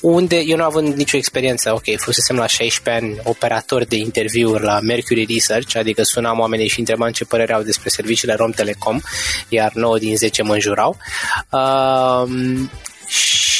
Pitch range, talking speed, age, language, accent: 115-155 Hz, 160 wpm, 20-39, Romanian, native